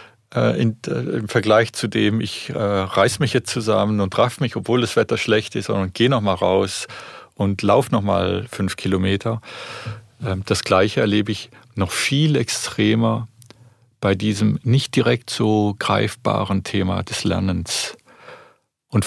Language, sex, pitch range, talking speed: German, male, 100-120 Hz, 155 wpm